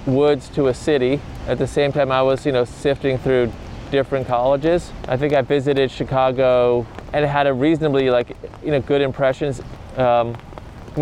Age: 20-39